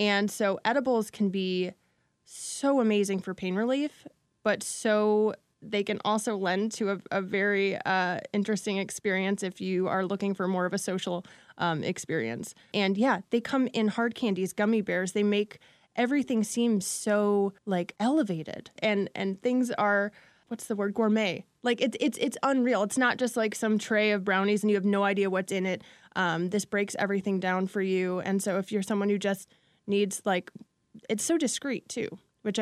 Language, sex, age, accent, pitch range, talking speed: English, female, 20-39, American, 190-215 Hz, 185 wpm